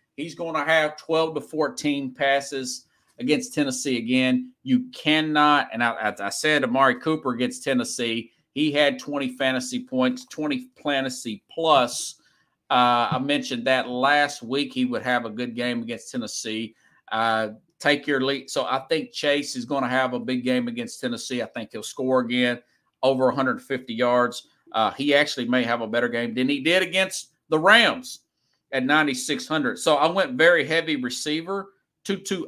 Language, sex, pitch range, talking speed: English, male, 130-170 Hz, 170 wpm